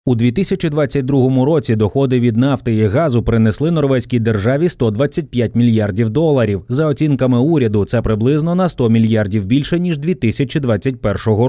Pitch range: 110-150 Hz